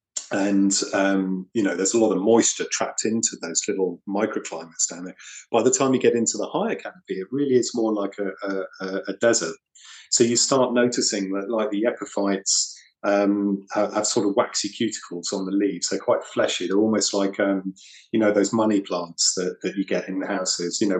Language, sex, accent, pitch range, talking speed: English, male, British, 95-115 Hz, 210 wpm